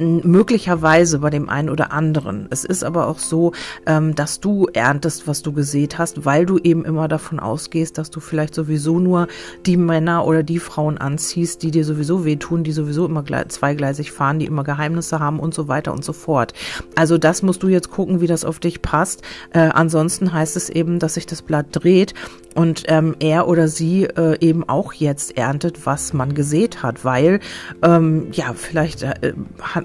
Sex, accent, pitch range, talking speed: female, German, 150-170 Hz, 195 wpm